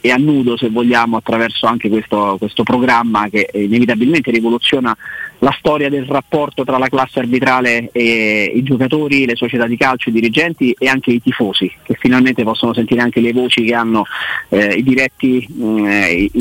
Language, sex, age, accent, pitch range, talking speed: Italian, male, 30-49, native, 115-140 Hz, 170 wpm